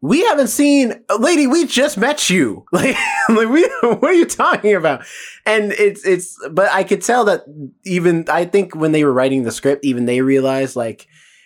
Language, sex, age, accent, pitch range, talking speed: English, male, 20-39, American, 120-180 Hz, 185 wpm